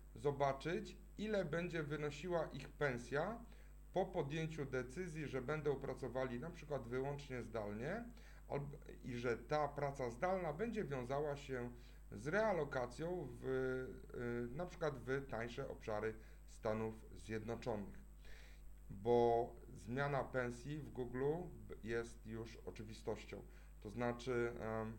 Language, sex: Polish, male